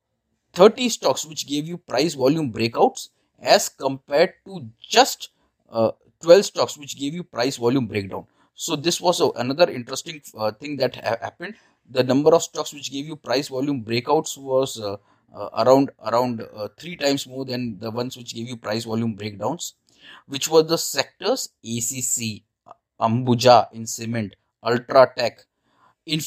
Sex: male